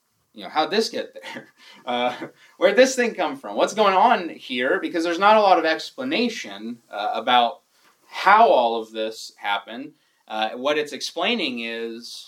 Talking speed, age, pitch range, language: 170 wpm, 30-49, 115-155 Hz, English